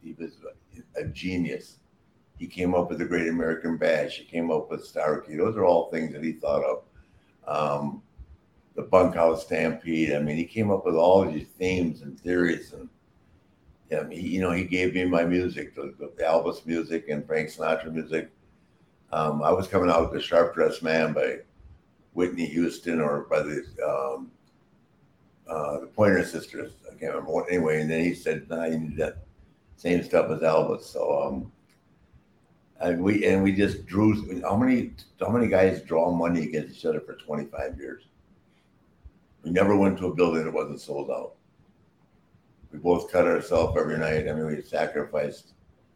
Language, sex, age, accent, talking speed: English, male, 60-79, American, 180 wpm